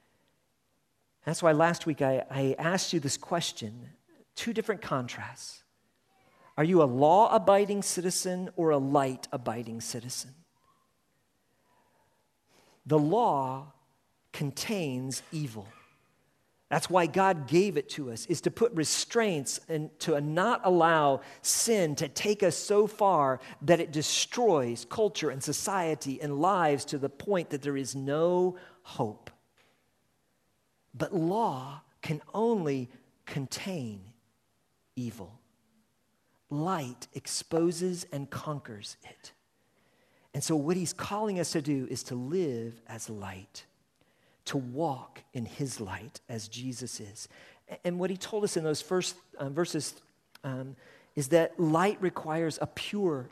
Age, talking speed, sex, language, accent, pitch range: 50-69, 125 wpm, male, English, American, 130-180 Hz